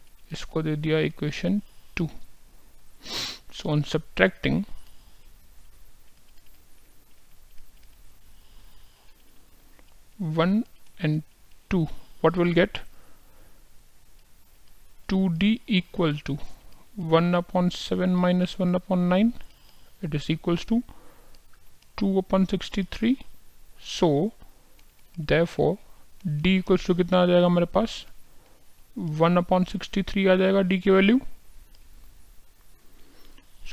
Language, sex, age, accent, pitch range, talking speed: Hindi, male, 50-69, native, 120-180 Hz, 95 wpm